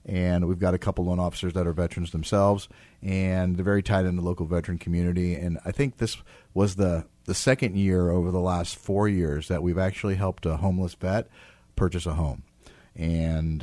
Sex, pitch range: male, 85-100 Hz